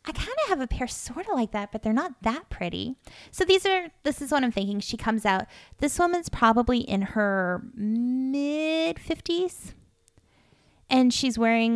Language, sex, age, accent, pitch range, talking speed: English, female, 20-39, American, 205-275 Hz, 180 wpm